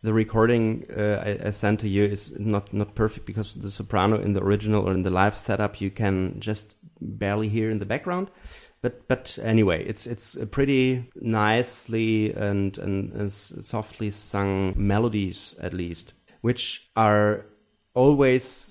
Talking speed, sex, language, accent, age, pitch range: 155 wpm, male, English, German, 30-49, 100-120 Hz